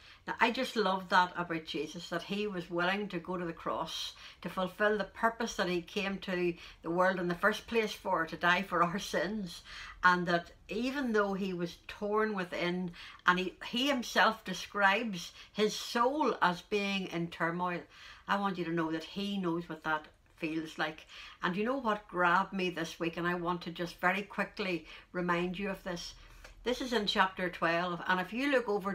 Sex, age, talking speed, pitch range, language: female, 60-79, 200 wpm, 175-210 Hz, English